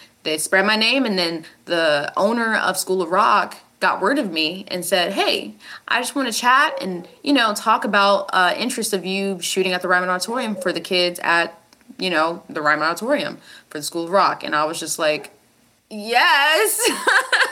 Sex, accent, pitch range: female, American, 180-290 Hz